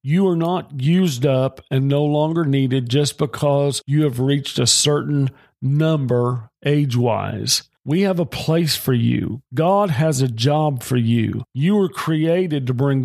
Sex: male